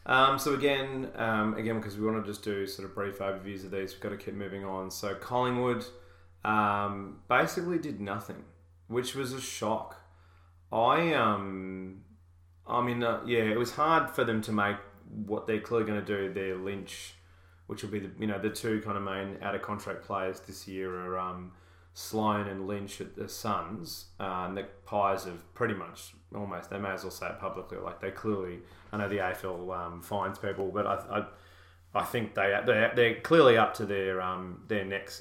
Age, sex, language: 20-39, male, English